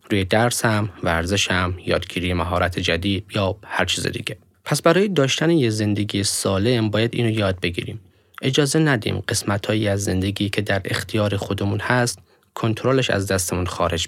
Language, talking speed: Persian, 145 wpm